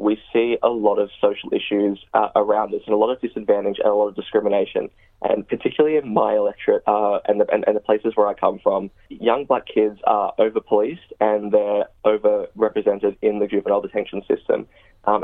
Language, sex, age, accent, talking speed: English, male, 20-39, Australian, 190 wpm